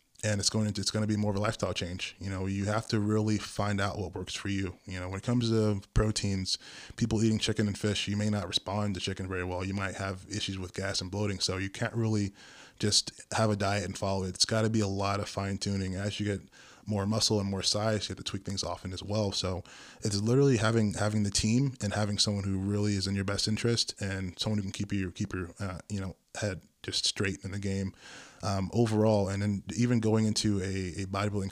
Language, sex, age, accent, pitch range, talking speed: English, male, 20-39, American, 95-110 Hz, 255 wpm